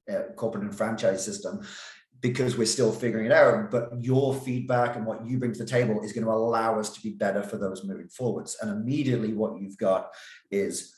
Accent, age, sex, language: British, 30-49, male, English